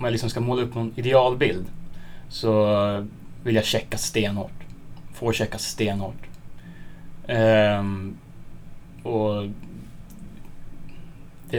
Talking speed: 100 wpm